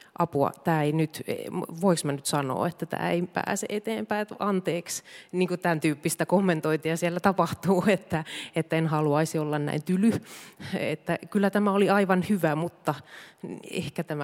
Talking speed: 150 wpm